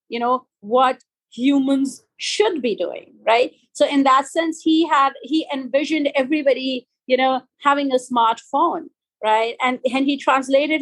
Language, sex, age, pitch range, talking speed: English, female, 30-49, 240-305 Hz, 150 wpm